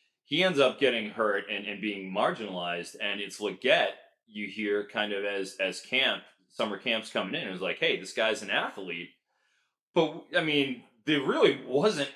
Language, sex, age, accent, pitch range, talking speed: English, male, 30-49, American, 105-145 Hz, 185 wpm